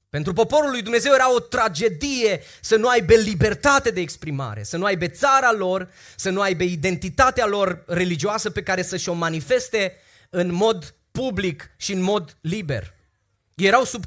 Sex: male